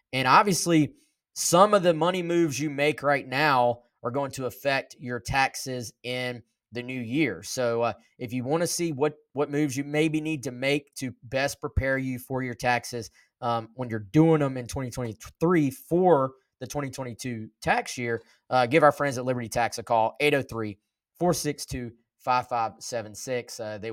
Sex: male